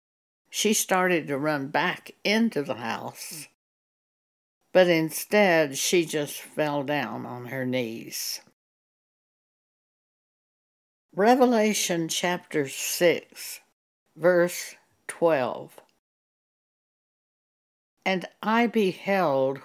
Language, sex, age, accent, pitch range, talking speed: English, female, 60-79, American, 150-195 Hz, 75 wpm